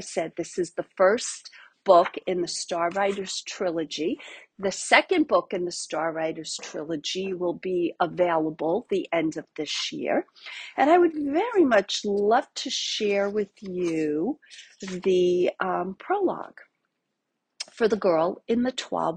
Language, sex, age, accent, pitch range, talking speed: English, female, 50-69, American, 175-230 Hz, 145 wpm